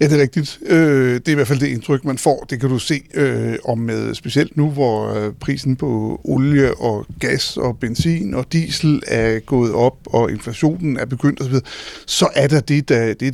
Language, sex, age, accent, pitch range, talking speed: Danish, male, 60-79, native, 130-180 Hz, 200 wpm